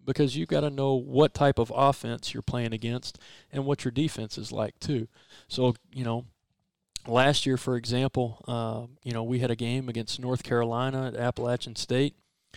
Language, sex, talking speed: English, male, 185 wpm